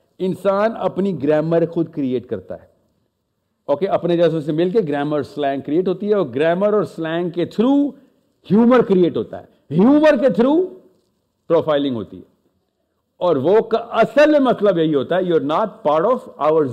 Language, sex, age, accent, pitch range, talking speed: English, male, 50-69, Indian, 165-250 Hz, 160 wpm